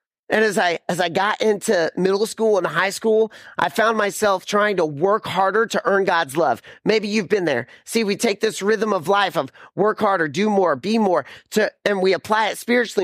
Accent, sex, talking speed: American, male, 215 wpm